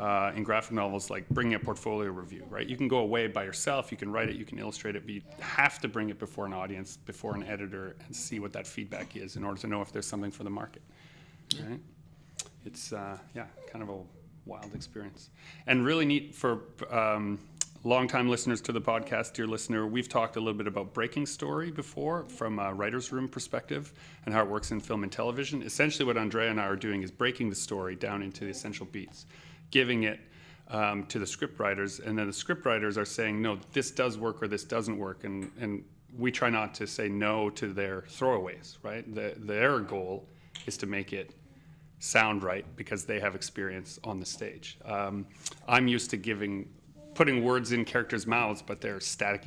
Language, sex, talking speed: English, male, 210 wpm